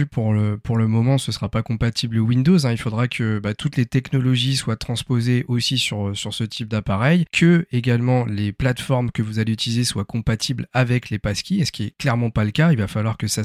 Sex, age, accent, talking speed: male, 30-49, French, 235 wpm